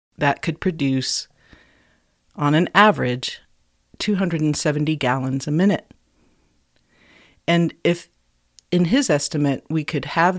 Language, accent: English, American